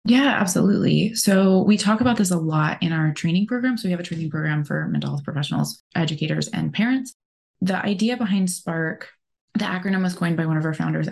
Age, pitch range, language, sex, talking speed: 20-39, 180-225 Hz, English, female, 210 wpm